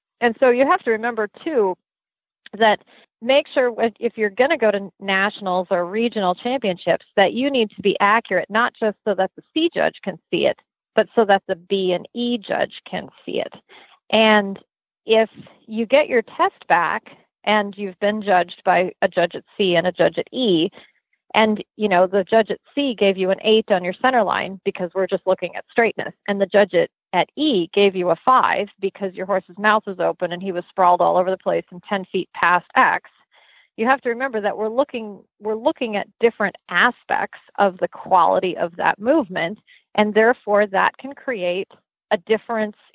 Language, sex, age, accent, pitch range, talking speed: English, female, 40-59, American, 190-235 Hz, 200 wpm